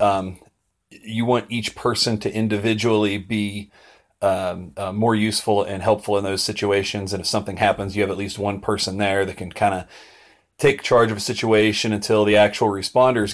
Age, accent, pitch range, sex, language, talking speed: 30-49, American, 100-115 Hz, male, English, 185 wpm